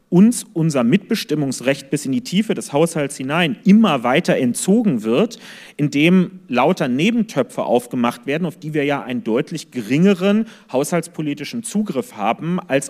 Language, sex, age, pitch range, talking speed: German, male, 40-59, 135-185 Hz, 140 wpm